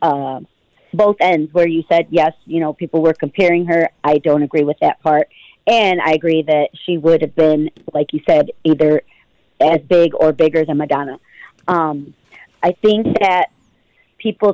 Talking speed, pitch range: 175 wpm, 160-190 Hz